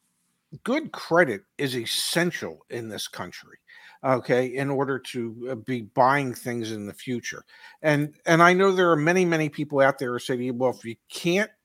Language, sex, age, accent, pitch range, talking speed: English, male, 50-69, American, 125-155 Hz, 175 wpm